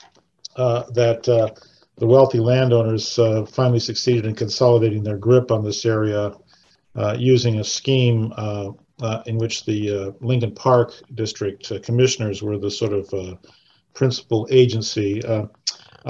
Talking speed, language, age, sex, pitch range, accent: 150 wpm, English, 50-69, male, 110-125 Hz, American